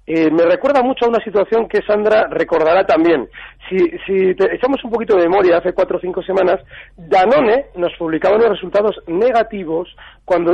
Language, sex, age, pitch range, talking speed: Spanish, male, 40-59, 180-245 Hz, 175 wpm